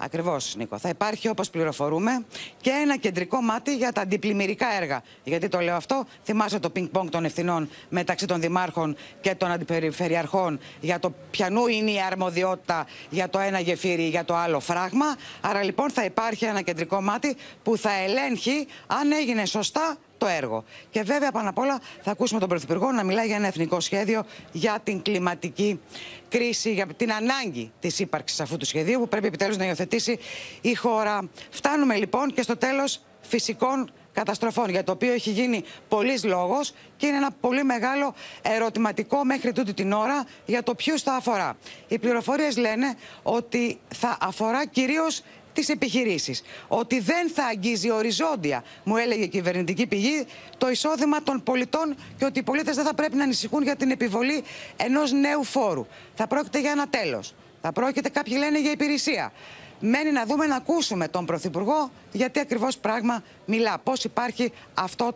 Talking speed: 170 wpm